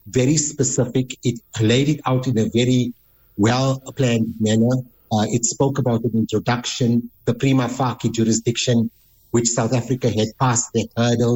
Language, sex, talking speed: English, male, 150 wpm